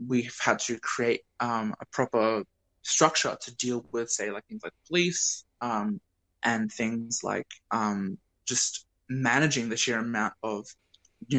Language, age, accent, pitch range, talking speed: English, 20-39, Australian, 115-140 Hz, 150 wpm